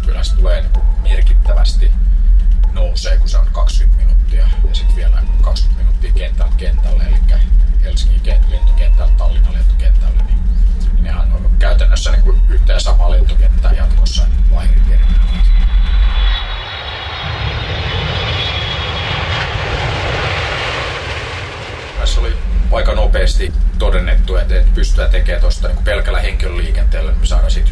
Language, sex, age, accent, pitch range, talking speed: Finnish, male, 30-49, native, 65-90 Hz, 115 wpm